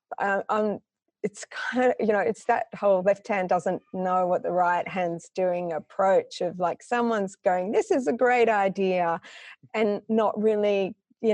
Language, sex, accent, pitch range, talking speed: English, female, Australian, 180-220 Hz, 170 wpm